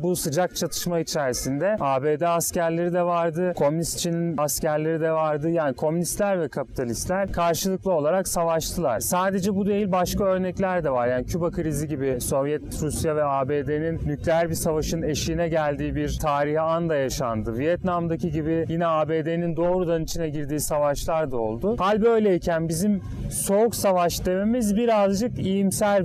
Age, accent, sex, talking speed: 30-49, native, male, 145 wpm